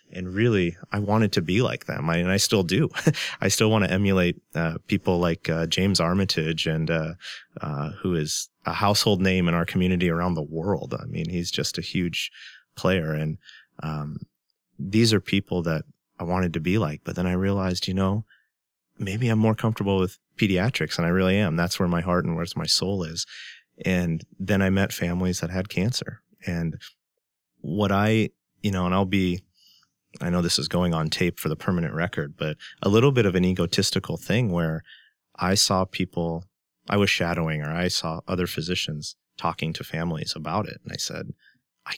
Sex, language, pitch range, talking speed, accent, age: male, English, 85-100 Hz, 195 wpm, American, 30-49